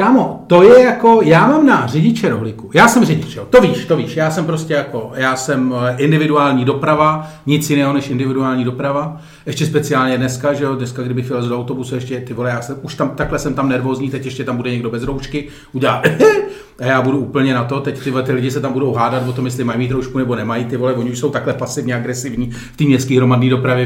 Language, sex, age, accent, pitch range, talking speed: Czech, male, 40-59, native, 125-155 Hz, 235 wpm